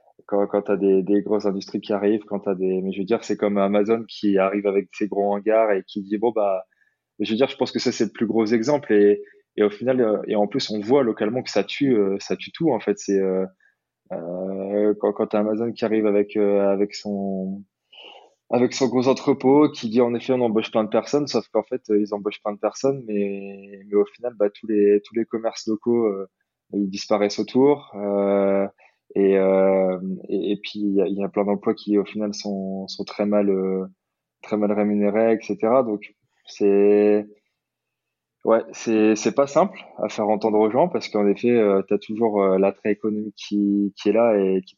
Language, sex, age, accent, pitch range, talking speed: French, male, 20-39, French, 100-110 Hz, 215 wpm